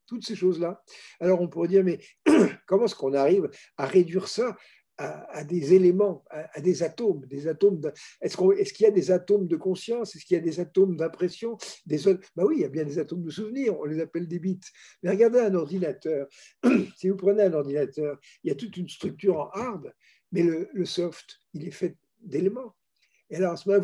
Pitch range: 175-220 Hz